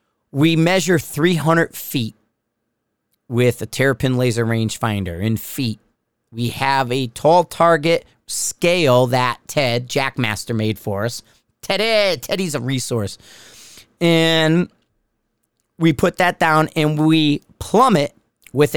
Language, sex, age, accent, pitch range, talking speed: English, male, 40-59, American, 120-160 Hz, 120 wpm